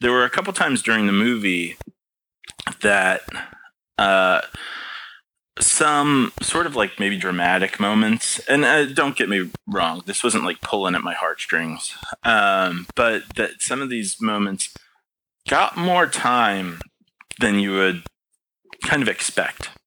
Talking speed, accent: 140 wpm, American